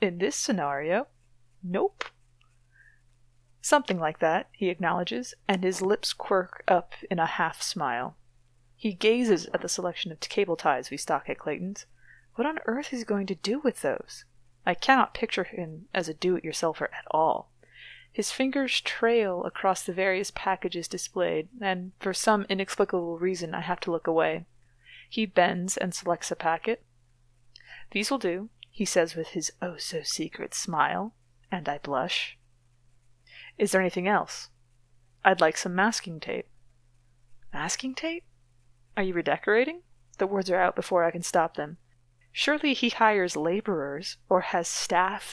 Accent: American